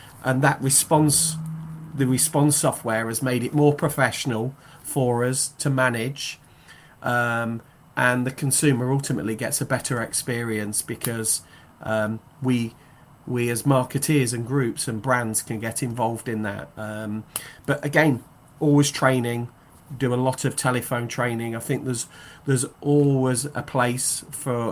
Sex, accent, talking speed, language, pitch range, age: male, British, 140 wpm, English, 115-140 Hz, 30-49